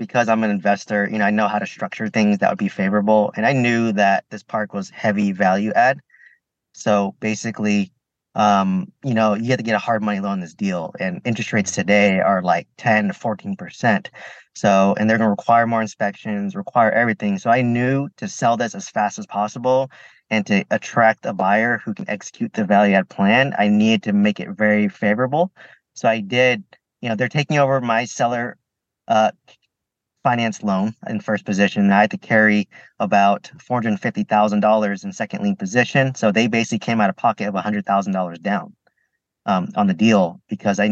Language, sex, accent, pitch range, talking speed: English, male, American, 100-120 Hz, 190 wpm